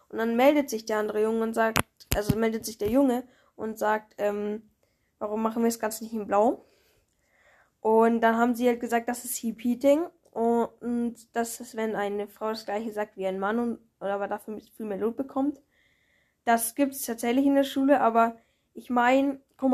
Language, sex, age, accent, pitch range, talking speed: German, female, 10-29, German, 210-240 Hz, 200 wpm